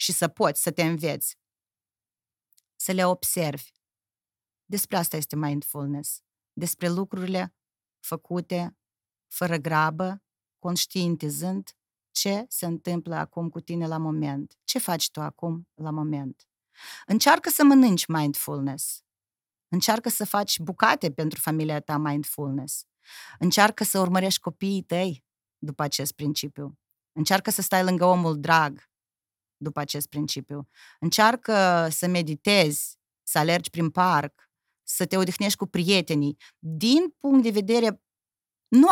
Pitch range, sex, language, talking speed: 150-190 Hz, female, Romanian, 120 wpm